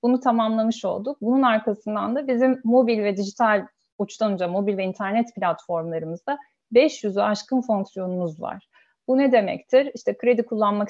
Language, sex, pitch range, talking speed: Turkish, female, 205-270 Hz, 140 wpm